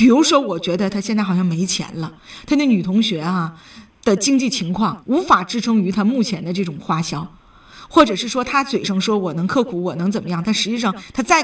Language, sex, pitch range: Chinese, female, 195-270 Hz